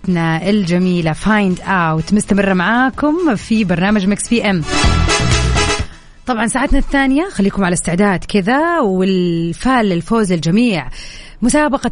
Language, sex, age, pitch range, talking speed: Arabic, female, 30-49, 180-235 Hz, 110 wpm